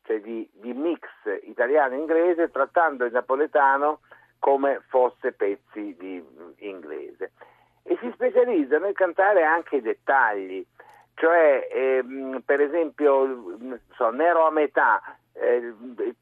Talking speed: 115 wpm